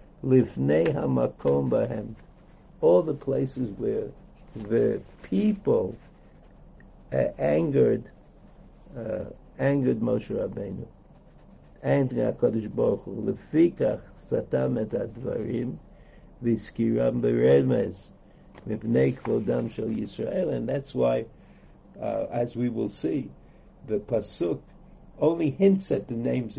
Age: 60-79